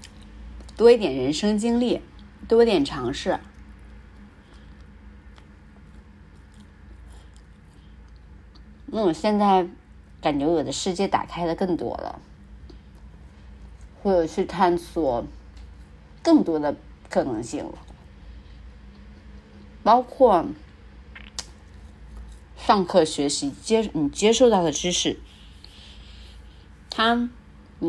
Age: 30-49